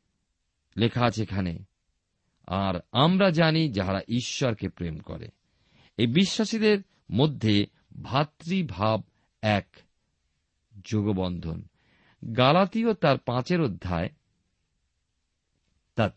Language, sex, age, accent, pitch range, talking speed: Bengali, male, 50-69, native, 100-155 Hz, 80 wpm